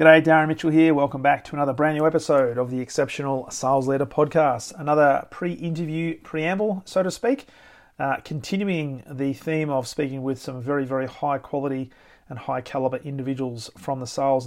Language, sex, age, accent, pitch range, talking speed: English, male, 40-59, Australian, 130-160 Hz, 175 wpm